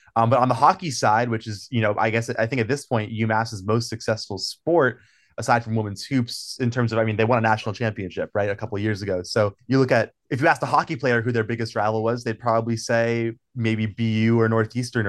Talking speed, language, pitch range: 255 wpm, English, 110-125 Hz